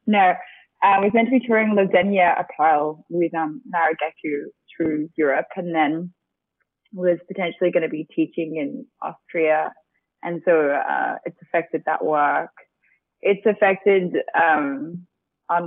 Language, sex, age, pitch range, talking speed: English, female, 20-39, 155-200 Hz, 140 wpm